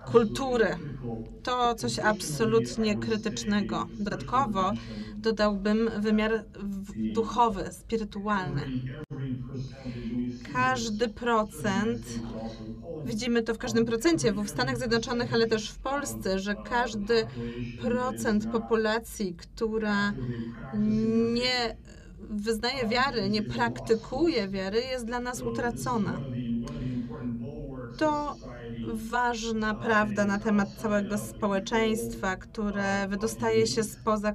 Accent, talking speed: native, 85 wpm